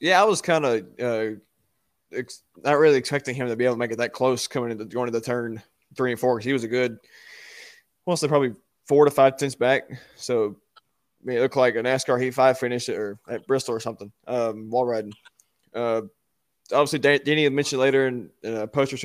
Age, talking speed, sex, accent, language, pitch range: 20-39, 215 wpm, male, American, English, 115-130 Hz